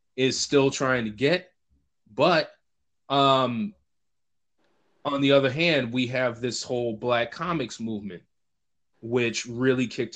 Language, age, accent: English, 20-39, American